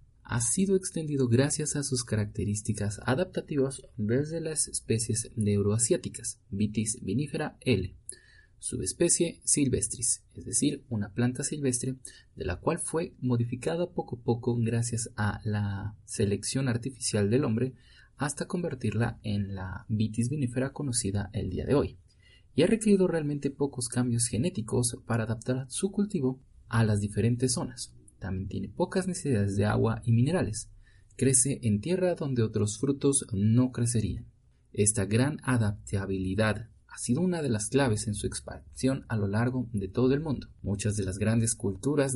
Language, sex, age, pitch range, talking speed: Spanish, male, 30-49, 105-135 Hz, 145 wpm